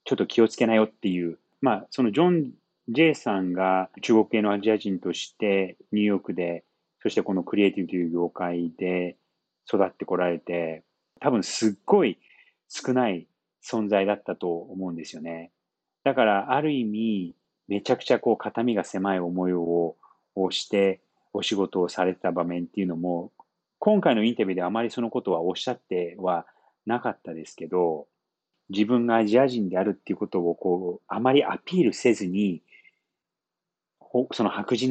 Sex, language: male, Japanese